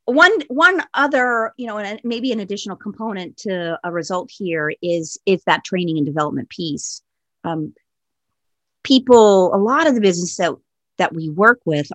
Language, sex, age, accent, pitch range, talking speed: English, female, 40-59, American, 160-210 Hz, 165 wpm